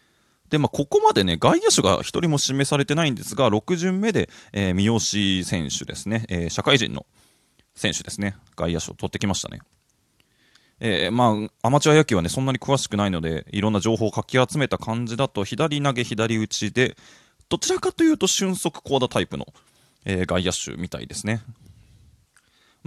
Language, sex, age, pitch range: Japanese, male, 20-39, 100-145 Hz